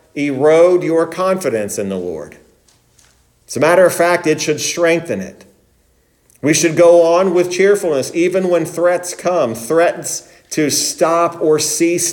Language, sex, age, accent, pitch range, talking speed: English, male, 40-59, American, 150-180 Hz, 150 wpm